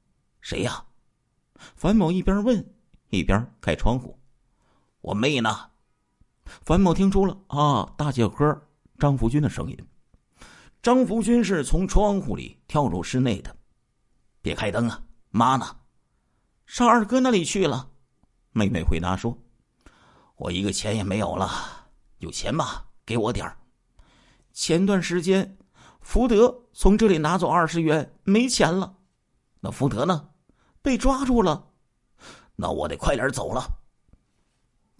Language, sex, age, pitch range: Chinese, male, 50-69, 120-195 Hz